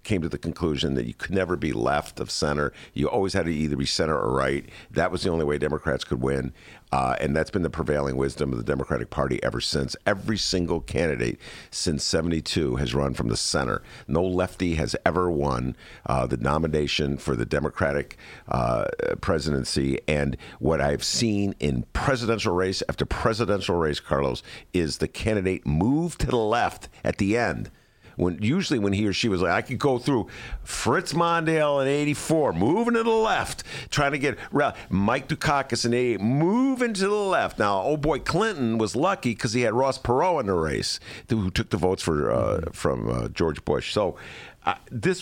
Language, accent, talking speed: English, American, 190 wpm